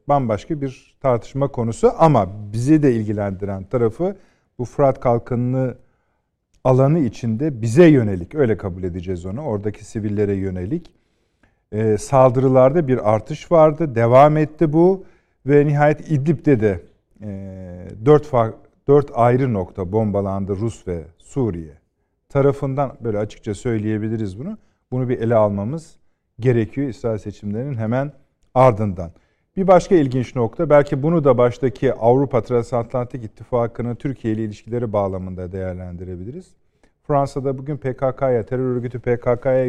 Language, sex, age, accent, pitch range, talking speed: Turkish, male, 50-69, native, 100-135 Hz, 120 wpm